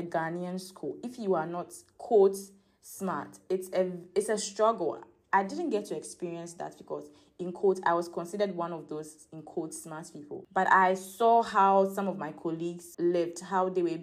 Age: 20-39